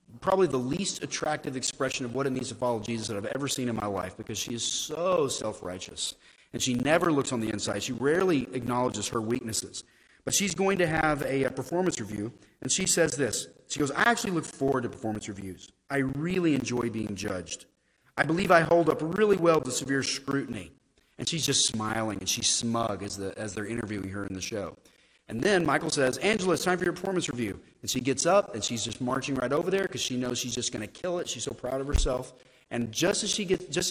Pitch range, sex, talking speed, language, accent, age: 120-165 Hz, male, 230 wpm, English, American, 30-49